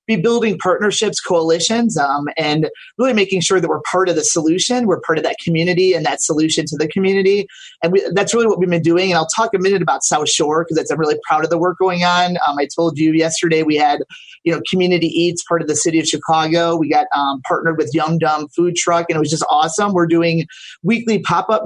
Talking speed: 235 wpm